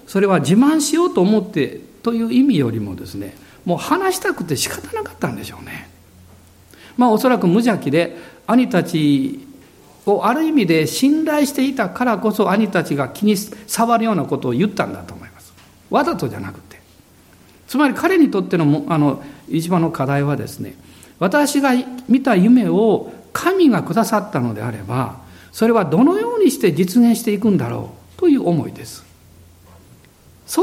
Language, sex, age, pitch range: Japanese, male, 60-79, 135-225 Hz